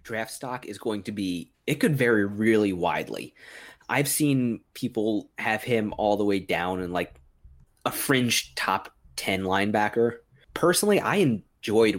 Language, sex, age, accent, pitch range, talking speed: English, male, 20-39, American, 95-125 Hz, 150 wpm